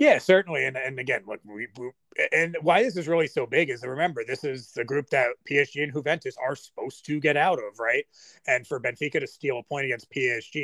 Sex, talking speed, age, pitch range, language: male, 235 wpm, 30-49, 120-175 Hz, English